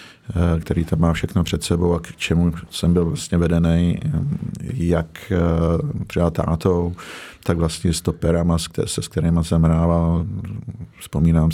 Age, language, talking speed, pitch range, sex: 50-69, Czech, 140 wpm, 80-90 Hz, male